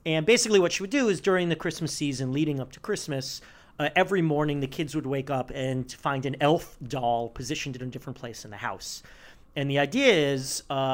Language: English